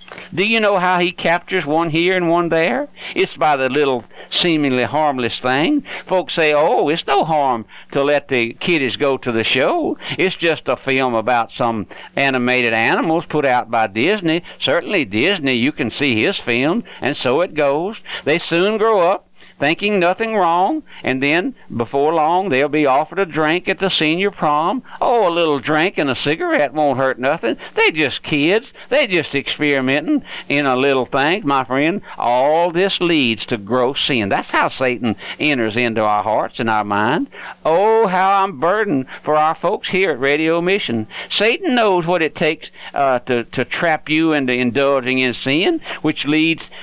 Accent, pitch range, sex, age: American, 130-180 Hz, male, 60-79